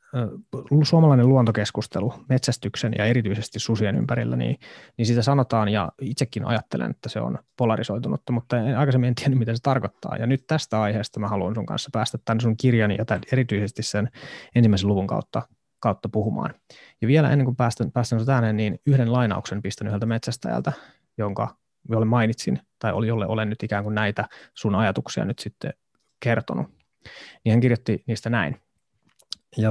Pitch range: 110-130 Hz